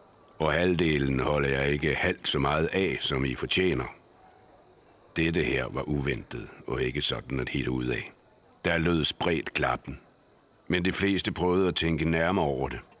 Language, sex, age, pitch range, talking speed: Danish, male, 60-79, 75-90 Hz, 165 wpm